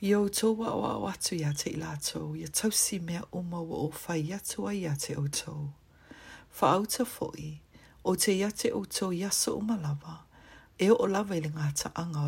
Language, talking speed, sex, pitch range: English, 215 wpm, female, 150-190 Hz